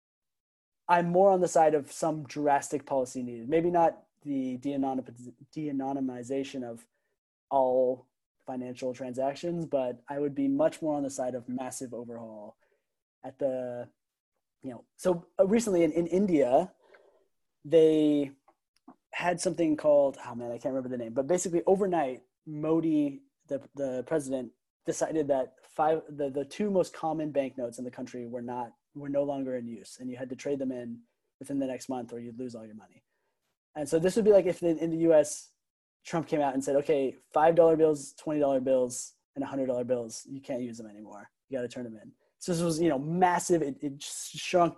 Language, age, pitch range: English, 20-39, 125-165 Hz